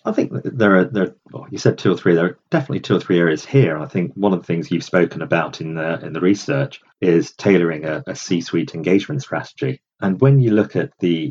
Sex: male